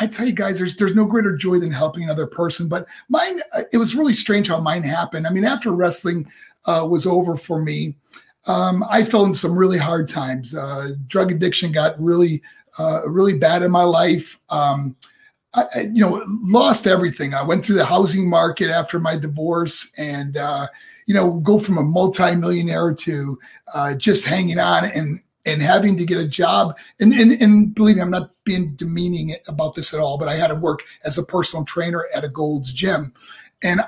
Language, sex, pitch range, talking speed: English, male, 165-220 Hz, 200 wpm